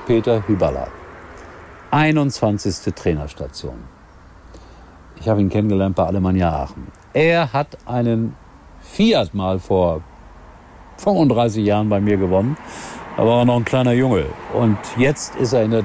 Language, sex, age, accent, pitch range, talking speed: German, male, 50-69, German, 95-125 Hz, 130 wpm